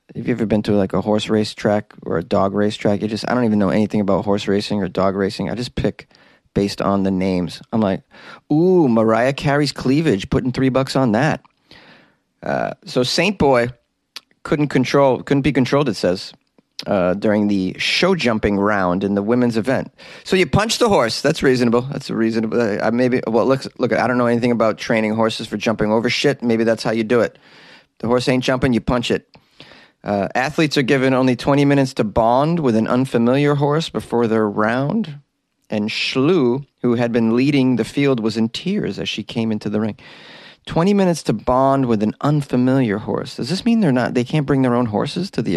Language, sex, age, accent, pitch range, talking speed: English, male, 30-49, American, 110-140 Hz, 210 wpm